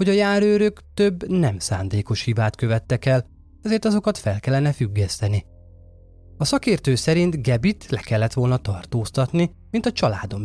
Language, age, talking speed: Hungarian, 20-39, 145 wpm